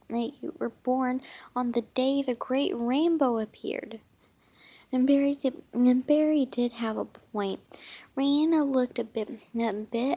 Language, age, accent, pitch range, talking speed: English, 10-29, American, 225-275 Hz, 155 wpm